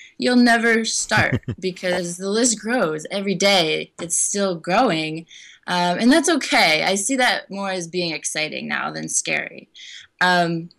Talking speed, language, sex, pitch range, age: 150 wpm, English, female, 155-190 Hz, 20-39